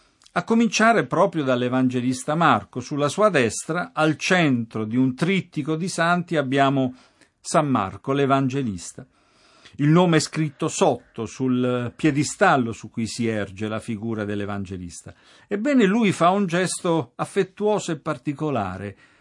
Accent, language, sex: native, Italian, male